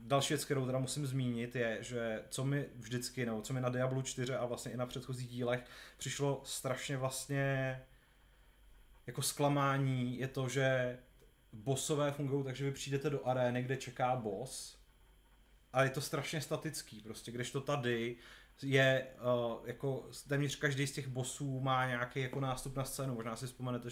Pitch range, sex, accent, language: 125-140 Hz, male, native, Czech